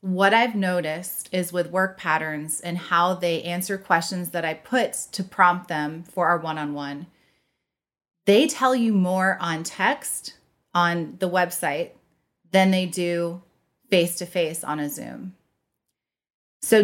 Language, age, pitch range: English, 30-49, 170-195 Hz